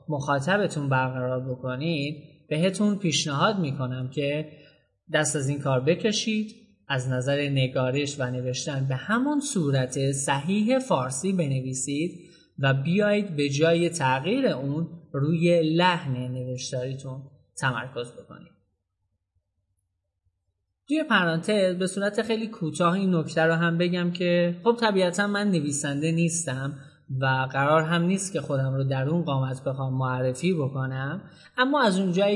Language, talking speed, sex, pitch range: Persian, 125 wpm, male, 130-175 Hz